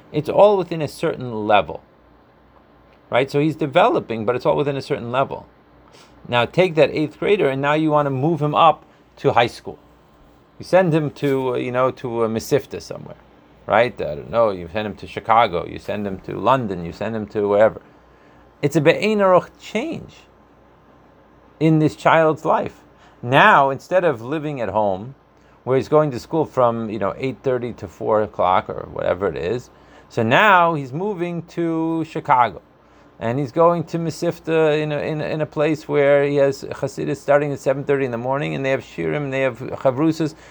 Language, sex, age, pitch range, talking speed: English, male, 30-49, 130-160 Hz, 185 wpm